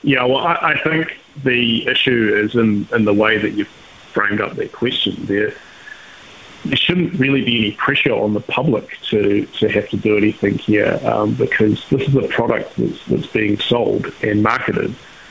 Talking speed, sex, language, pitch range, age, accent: 185 wpm, male, English, 110-130 Hz, 30-49, Australian